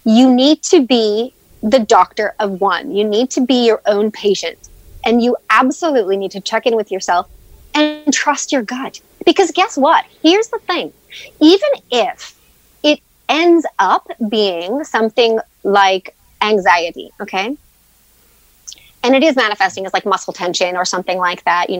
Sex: female